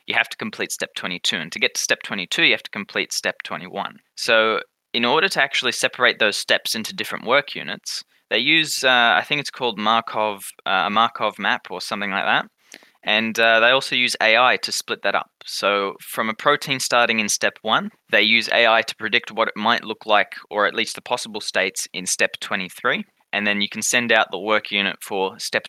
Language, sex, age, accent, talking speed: English, male, 20-39, Australian, 220 wpm